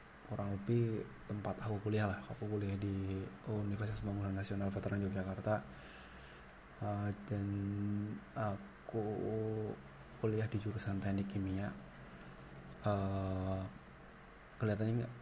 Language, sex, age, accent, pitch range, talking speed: Indonesian, male, 20-39, native, 95-105 Hz, 95 wpm